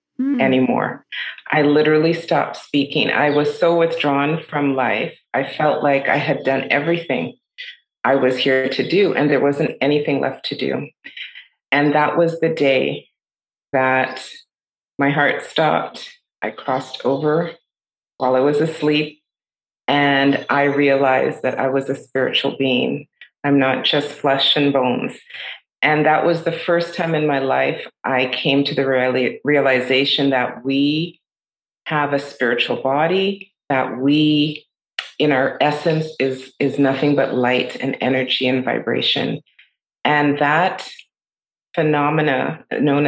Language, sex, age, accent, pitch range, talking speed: English, female, 30-49, American, 135-155 Hz, 140 wpm